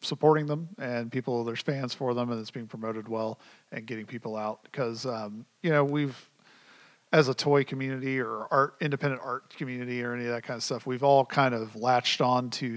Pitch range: 120-140 Hz